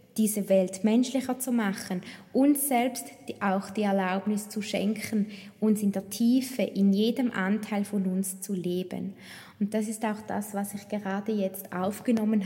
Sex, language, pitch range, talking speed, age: female, German, 195-220 Hz, 160 wpm, 20-39